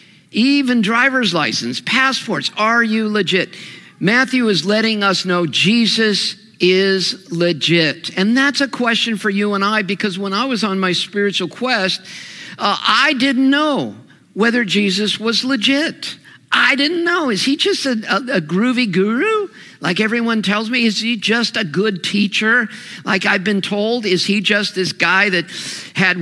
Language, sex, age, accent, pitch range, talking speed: English, male, 50-69, American, 185-235 Hz, 165 wpm